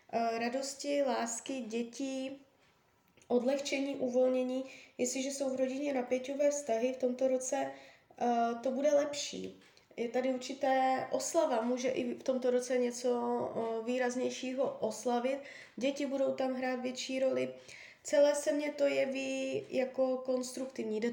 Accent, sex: native, female